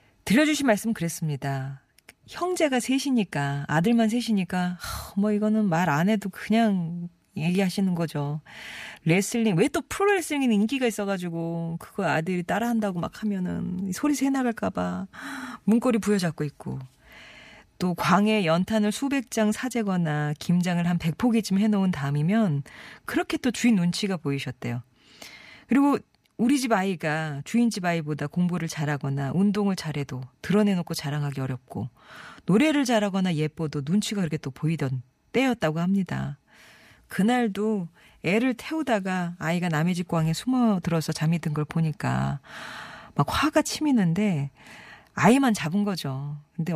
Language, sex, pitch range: Korean, female, 150-215 Hz